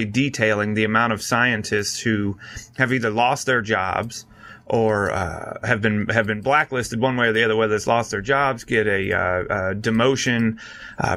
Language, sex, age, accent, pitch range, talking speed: English, male, 30-49, American, 110-135 Hz, 185 wpm